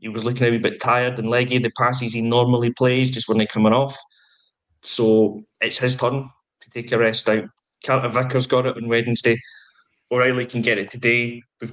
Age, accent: 20-39, British